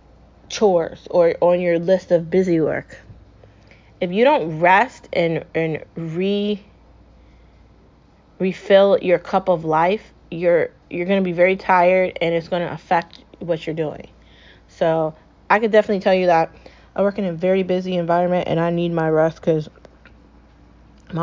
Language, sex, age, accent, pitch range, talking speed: English, female, 20-39, American, 170-190 Hz, 160 wpm